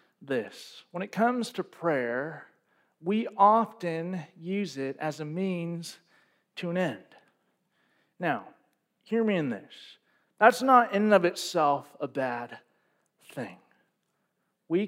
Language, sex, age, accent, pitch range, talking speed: English, male, 40-59, American, 155-195 Hz, 125 wpm